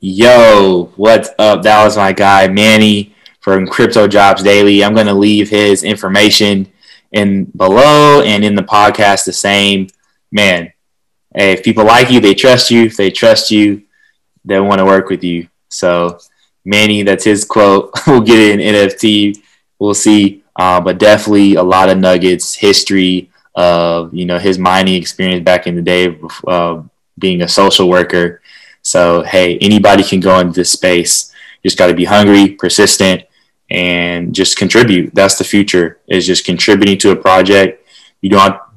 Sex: male